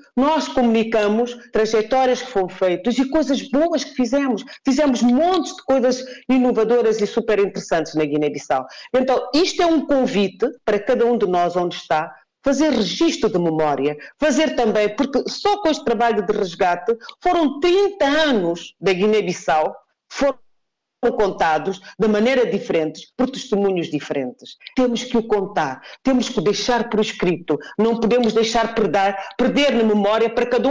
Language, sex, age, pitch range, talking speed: Portuguese, female, 40-59, 180-245 Hz, 150 wpm